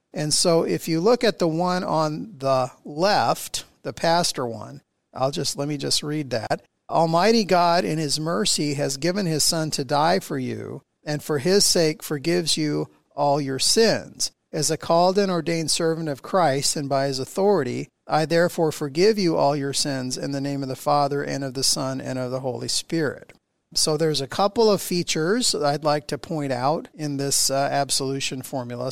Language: English